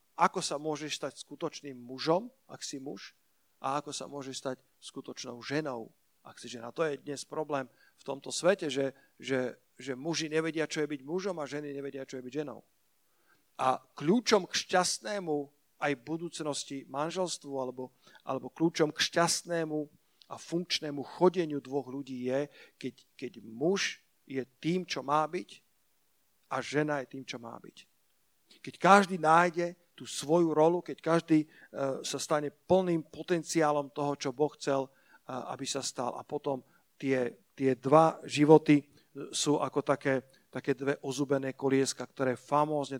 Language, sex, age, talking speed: Slovak, male, 50-69, 155 wpm